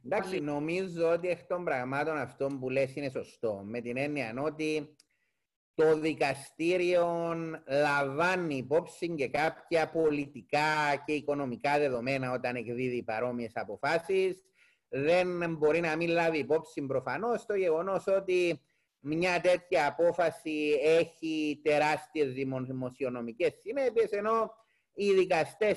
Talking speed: 115 wpm